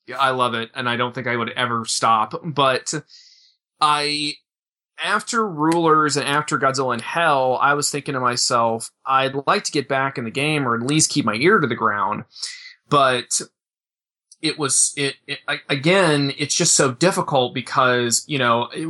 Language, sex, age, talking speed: English, male, 30-49, 180 wpm